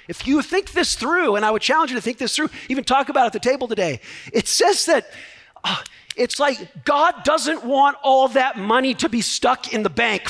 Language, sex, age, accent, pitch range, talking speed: English, male, 40-59, American, 230-295 Hz, 225 wpm